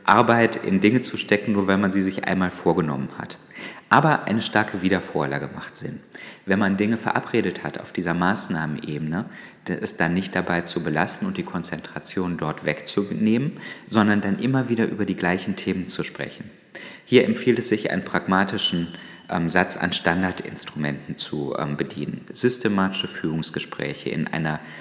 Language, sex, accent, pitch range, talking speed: German, male, German, 85-115 Hz, 155 wpm